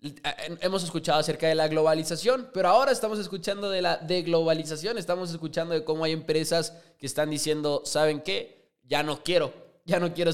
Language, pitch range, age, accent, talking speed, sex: Spanish, 145-180 Hz, 20-39, Mexican, 175 wpm, male